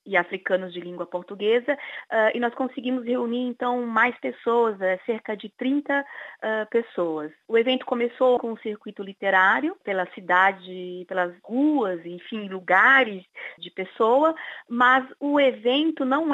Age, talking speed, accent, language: 30-49, 130 wpm, Brazilian, Portuguese